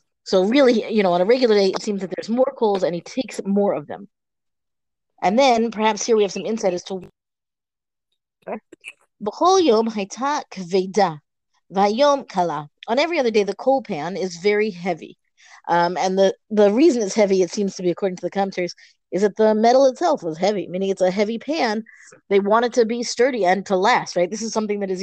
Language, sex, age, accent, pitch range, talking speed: English, female, 30-49, American, 180-230 Hz, 195 wpm